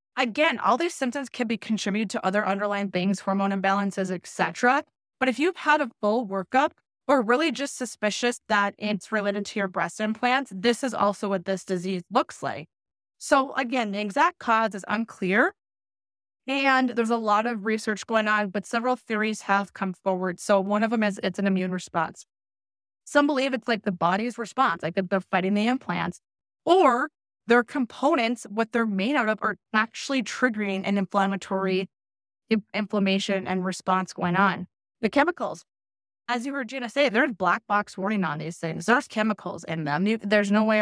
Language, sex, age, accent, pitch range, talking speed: English, female, 20-39, American, 190-240 Hz, 180 wpm